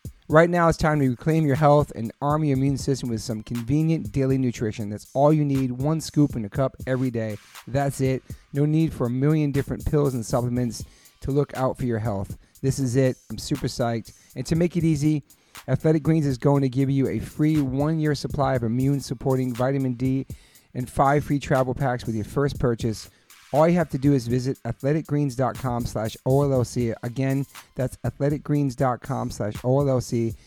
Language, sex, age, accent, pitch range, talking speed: English, male, 40-59, American, 120-145 Hz, 185 wpm